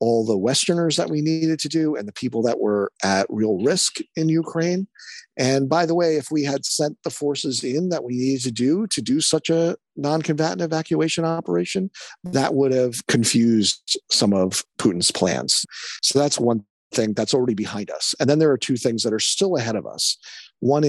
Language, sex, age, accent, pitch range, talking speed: English, male, 50-69, American, 115-160 Hz, 200 wpm